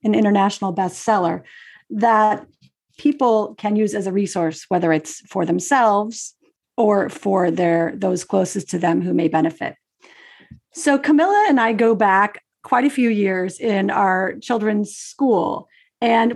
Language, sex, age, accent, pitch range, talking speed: English, female, 40-59, American, 195-250 Hz, 145 wpm